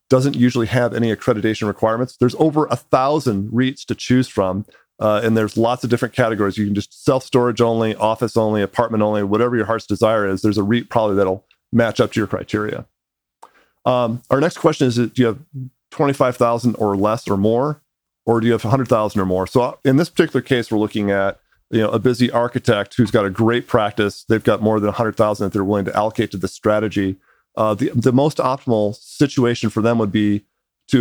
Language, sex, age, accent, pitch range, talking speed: English, male, 40-59, American, 105-125 Hz, 205 wpm